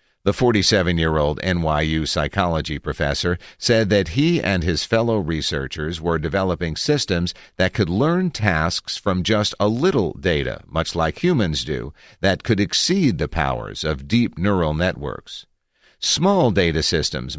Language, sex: English, male